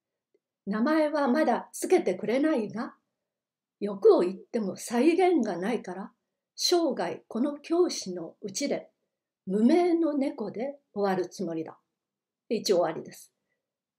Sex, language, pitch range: female, Japanese, 195-300 Hz